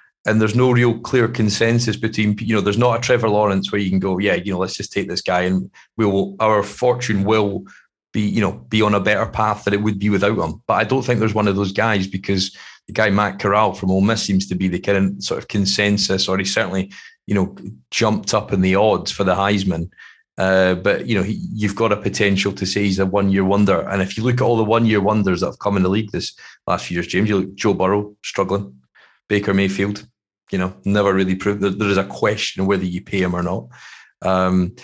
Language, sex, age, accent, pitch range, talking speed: English, male, 30-49, British, 95-110 Hz, 250 wpm